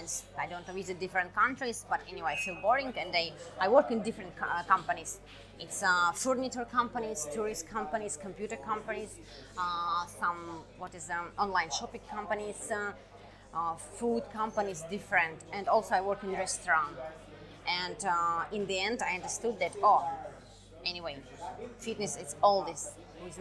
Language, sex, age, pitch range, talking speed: English, female, 20-39, 165-210 Hz, 150 wpm